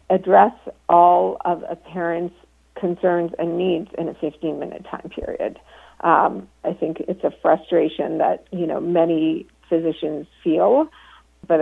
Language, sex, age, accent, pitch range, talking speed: English, female, 50-69, American, 170-215 Hz, 135 wpm